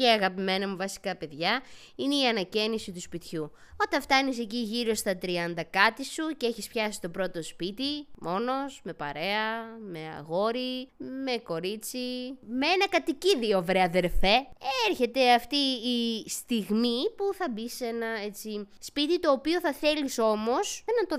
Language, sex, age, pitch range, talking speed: Greek, female, 20-39, 190-290 Hz, 150 wpm